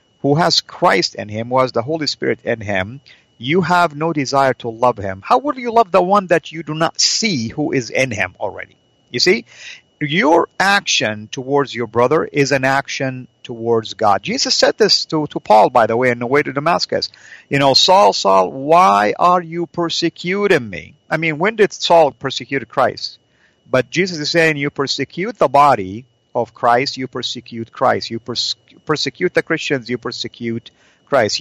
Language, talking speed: English, 185 wpm